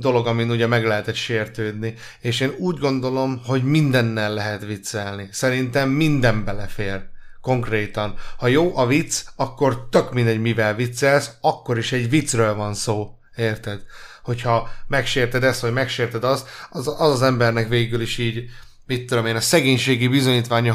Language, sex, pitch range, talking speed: Hungarian, male, 115-135 Hz, 155 wpm